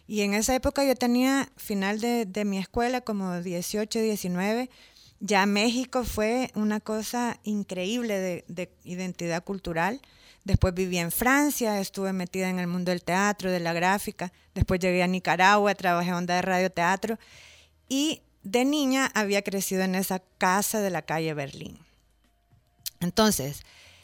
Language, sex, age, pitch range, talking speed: Spanish, female, 30-49, 185-225 Hz, 145 wpm